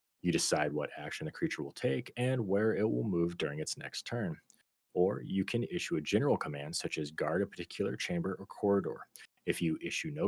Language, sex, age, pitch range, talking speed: English, male, 30-49, 80-100 Hz, 210 wpm